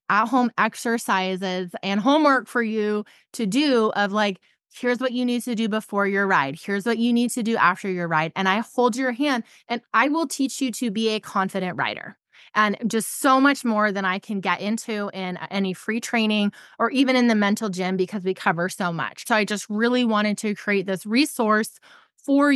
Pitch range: 200-245 Hz